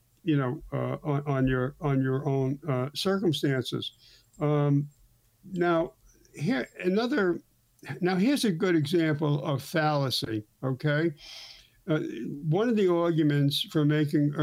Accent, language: American, English